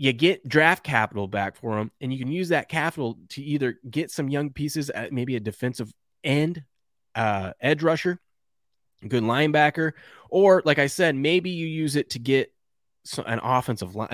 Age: 20-39